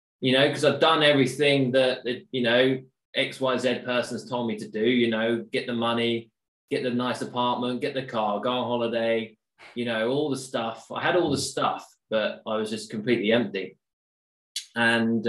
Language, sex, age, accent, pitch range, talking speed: English, male, 20-39, British, 105-130 Hz, 190 wpm